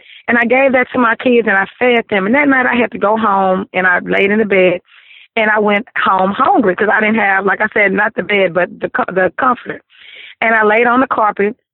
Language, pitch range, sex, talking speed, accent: English, 210-260 Hz, female, 250 wpm, American